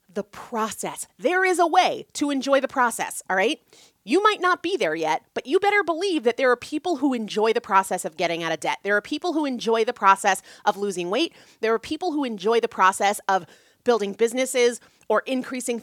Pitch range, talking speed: 205-315 Hz, 215 wpm